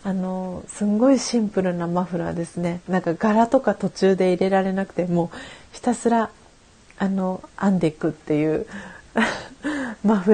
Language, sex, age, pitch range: Japanese, female, 40-59, 180-215 Hz